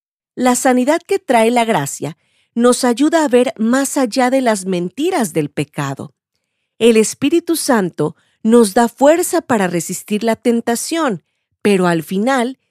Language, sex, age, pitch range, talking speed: Spanish, female, 40-59, 175-260 Hz, 140 wpm